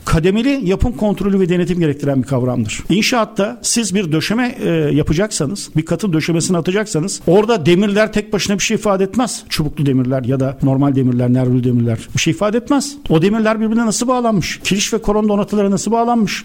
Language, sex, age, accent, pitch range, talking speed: Turkish, male, 60-79, native, 160-215 Hz, 175 wpm